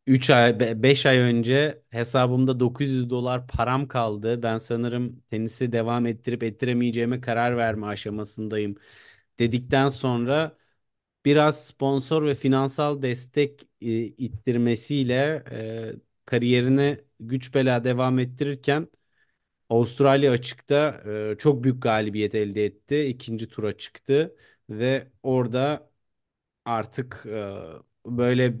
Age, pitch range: 30-49, 115-140 Hz